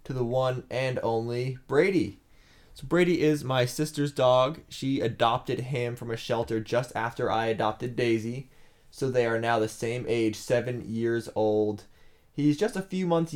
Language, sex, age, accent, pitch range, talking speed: English, male, 20-39, American, 110-125 Hz, 170 wpm